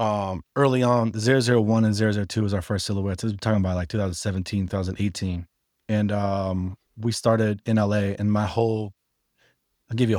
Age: 20-39